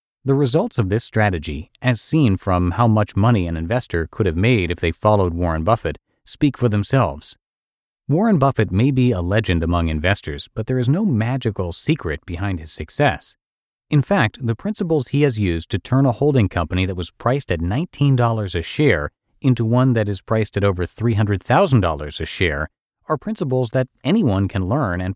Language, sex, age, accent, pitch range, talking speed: English, male, 30-49, American, 90-130 Hz, 185 wpm